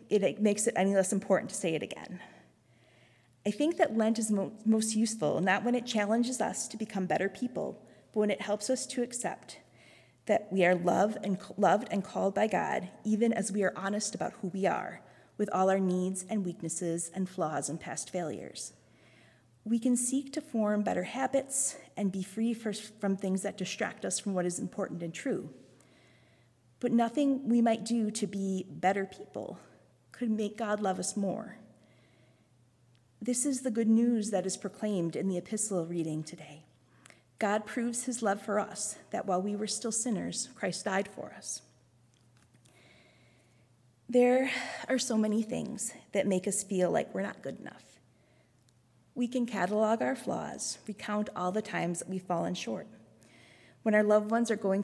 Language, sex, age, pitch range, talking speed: English, female, 30-49, 175-225 Hz, 175 wpm